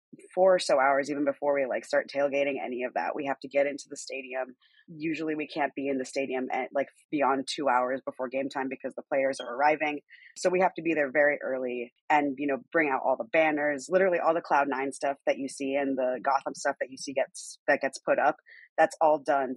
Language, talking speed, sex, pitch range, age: English, 245 wpm, female, 135-160 Hz, 30-49